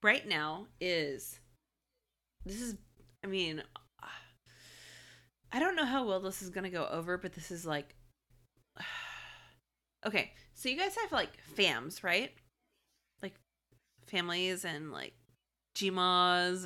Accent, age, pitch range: American, 30-49, 145-195 Hz